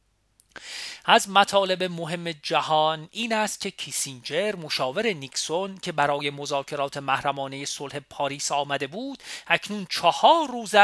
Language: Persian